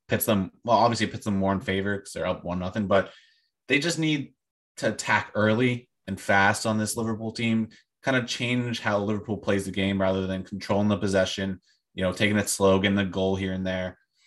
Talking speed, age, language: 215 wpm, 20-39, English